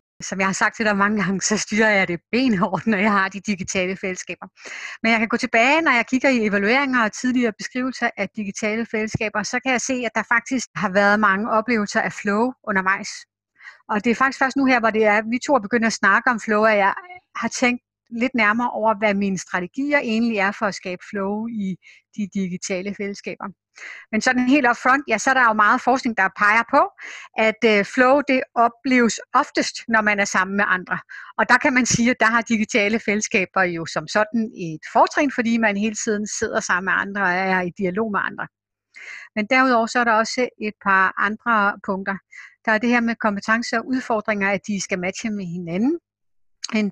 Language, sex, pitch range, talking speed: Danish, female, 200-235 Hz, 215 wpm